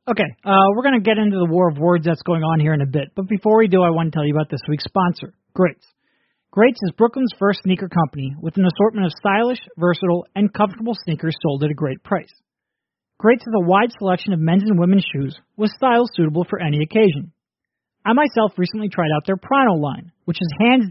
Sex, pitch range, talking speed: male, 165-220 Hz, 225 wpm